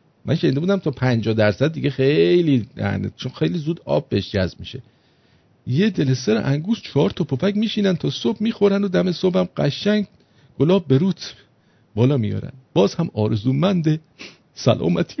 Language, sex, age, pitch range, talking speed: English, male, 50-69, 105-145 Hz, 140 wpm